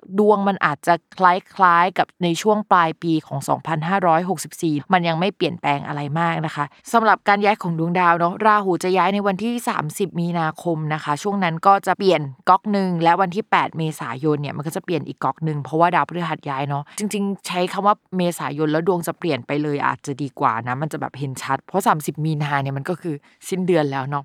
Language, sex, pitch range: Thai, female, 155-195 Hz